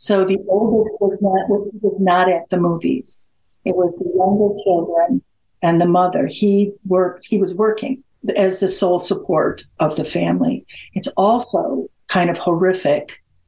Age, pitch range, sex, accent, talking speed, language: 60-79, 175-205 Hz, female, American, 145 wpm, English